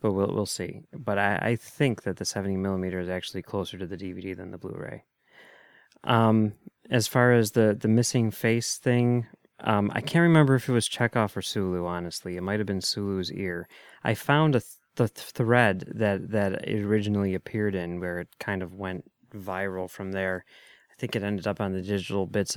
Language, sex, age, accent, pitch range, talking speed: English, male, 20-39, American, 95-110 Hz, 200 wpm